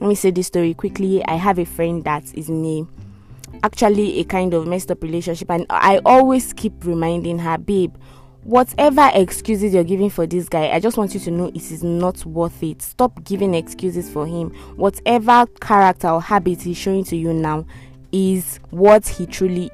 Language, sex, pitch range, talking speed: English, female, 165-205 Hz, 195 wpm